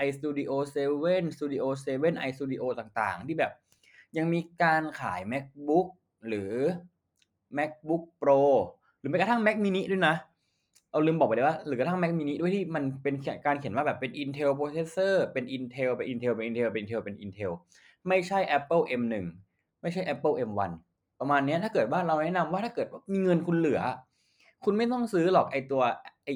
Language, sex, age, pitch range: Thai, male, 20-39, 125-165 Hz